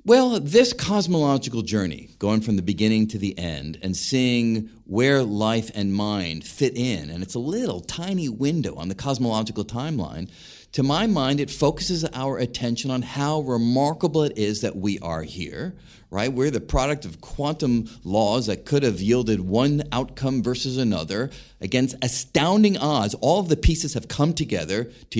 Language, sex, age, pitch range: English, male, 40-59, 110-150 Hz